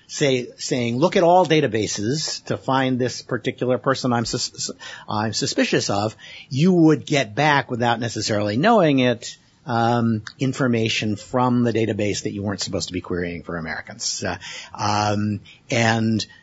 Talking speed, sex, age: 150 wpm, male, 50-69